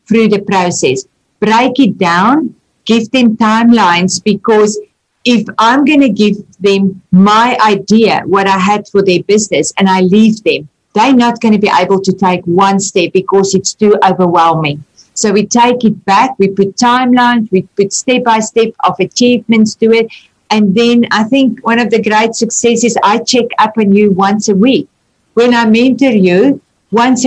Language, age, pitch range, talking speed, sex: English, 50-69, 200-235 Hz, 175 wpm, female